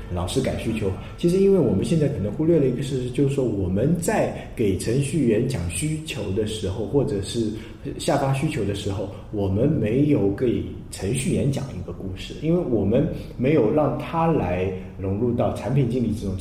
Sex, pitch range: male, 100-140 Hz